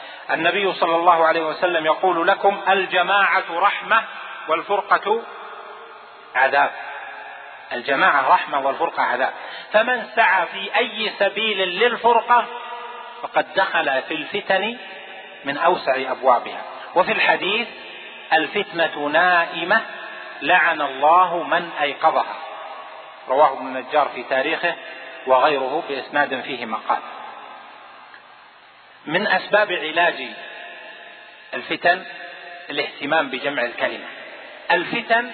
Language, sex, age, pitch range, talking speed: Arabic, male, 40-59, 165-205 Hz, 90 wpm